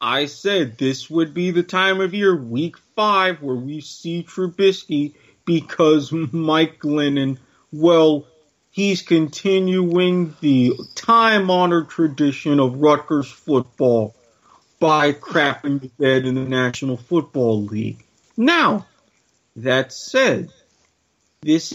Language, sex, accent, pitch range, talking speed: English, male, American, 140-175 Hz, 110 wpm